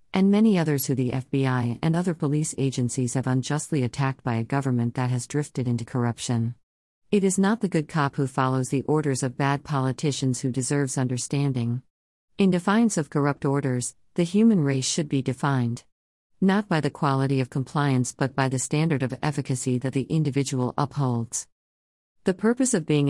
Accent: American